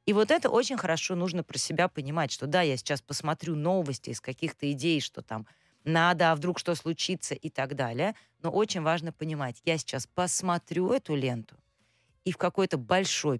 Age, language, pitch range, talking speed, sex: 30-49, Russian, 140-185 Hz, 185 wpm, female